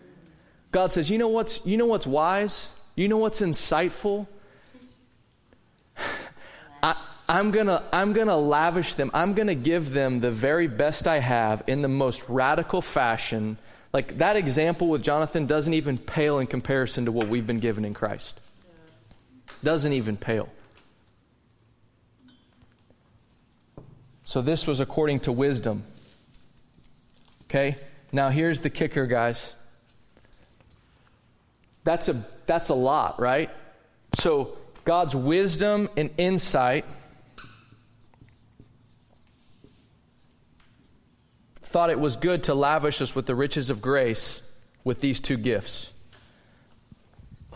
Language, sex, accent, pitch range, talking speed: English, male, American, 115-150 Hz, 120 wpm